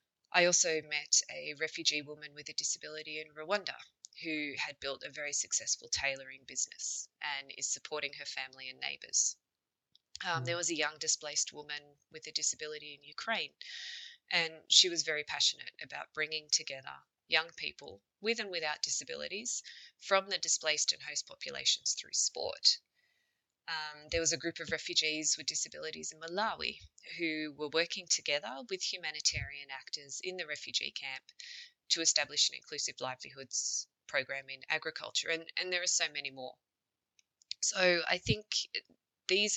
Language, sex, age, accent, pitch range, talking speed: English, female, 20-39, Australian, 150-185 Hz, 155 wpm